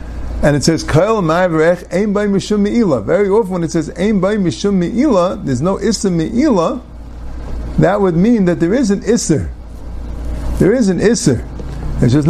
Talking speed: 175 wpm